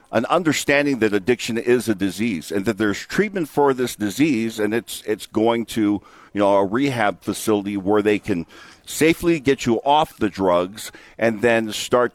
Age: 50-69